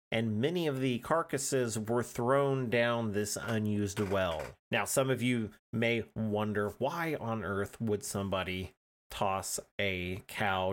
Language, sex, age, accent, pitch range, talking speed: English, male, 30-49, American, 105-125 Hz, 140 wpm